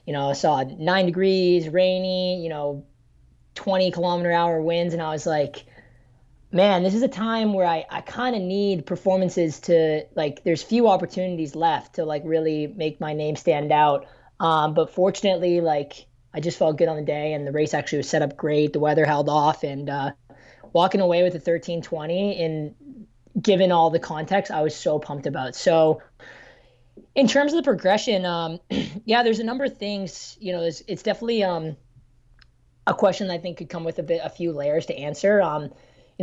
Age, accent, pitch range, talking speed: 20-39, American, 150-190 Hz, 195 wpm